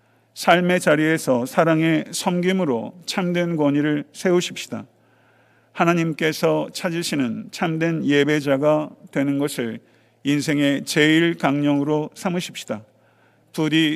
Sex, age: male, 50-69